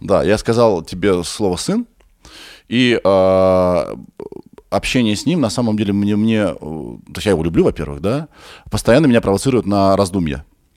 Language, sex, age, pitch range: Russian, male, 20-39, 90-125 Hz